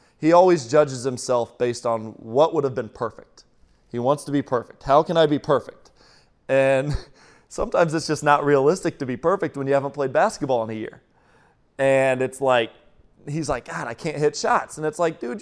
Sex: male